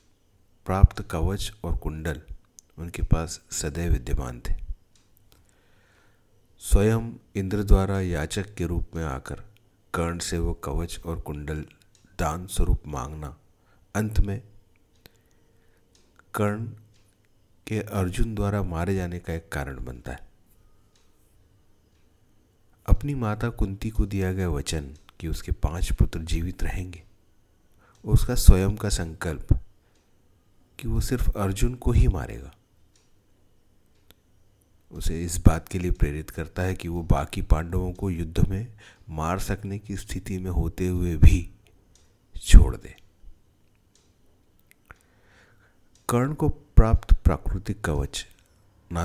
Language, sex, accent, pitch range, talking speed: Hindi, male, native, 85-100 Hz, 115 wpm